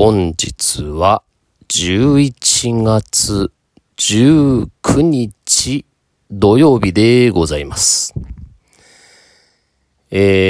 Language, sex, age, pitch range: Japanese, male, 40-59, 90-115 Hz